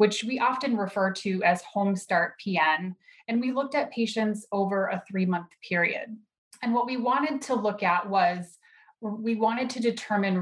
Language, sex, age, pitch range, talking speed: English, female, 20-39, 180-225 Hz, 180 wpm